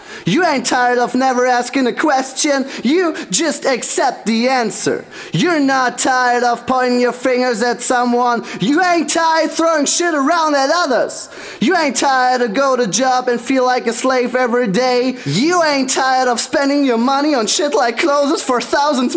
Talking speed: 180 wpm